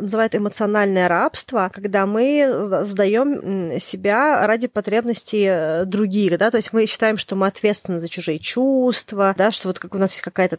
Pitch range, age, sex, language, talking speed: 190-220 Hz, 20-39, female, Russian, 160 wpm